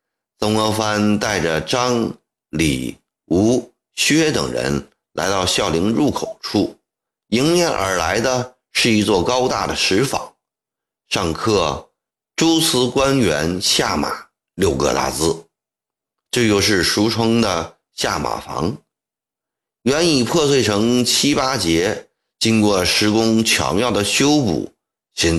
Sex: male